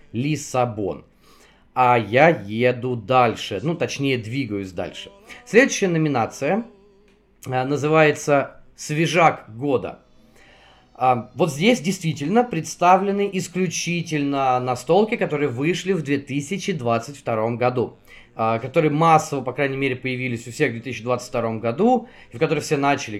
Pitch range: 130-170 Hz